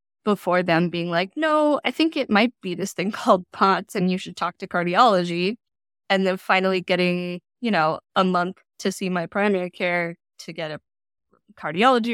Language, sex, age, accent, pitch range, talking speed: English, female, 20-39, American, 170-205 Hz, 185 wpm